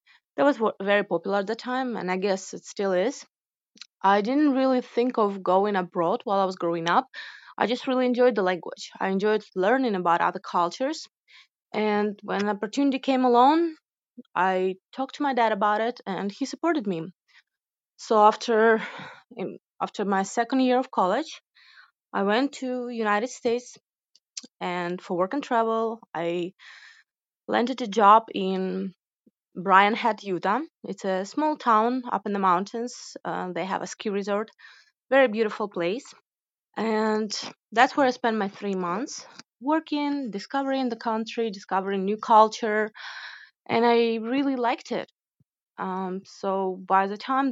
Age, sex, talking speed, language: 20-39, female, 155 wpm, English